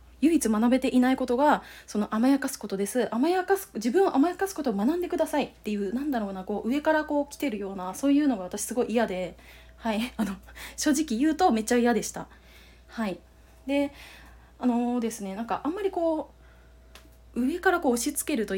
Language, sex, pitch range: Japanese, female, 210-295 Hz